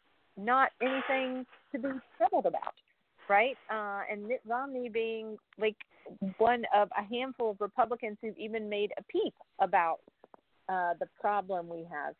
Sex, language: female, English